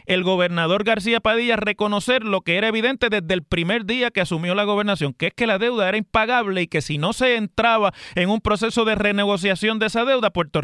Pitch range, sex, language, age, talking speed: 165-230 Hz, male, Spanish, 30-49, 220 wpm